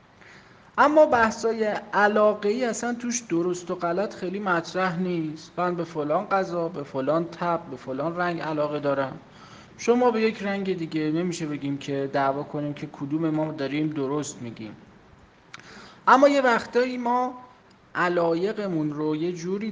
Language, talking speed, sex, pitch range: Persian, 145 wpm, male, 140-180 Hz